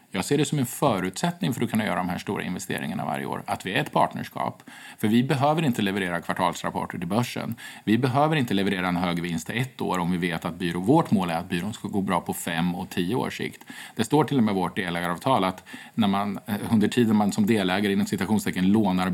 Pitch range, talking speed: 90-120 Hz, 245 wpm